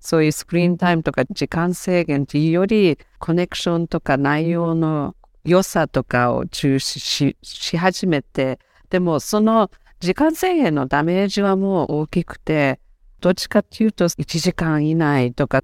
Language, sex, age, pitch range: Japanese, female, 50-69, 145-185 Hz